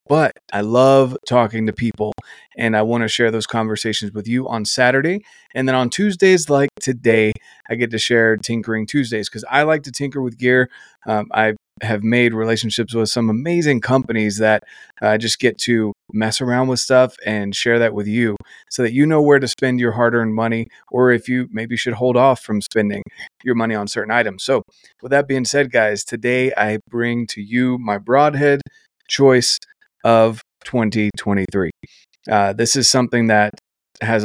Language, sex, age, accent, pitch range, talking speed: English, male, 30-49, American, 110-125 Hz, 185 wpm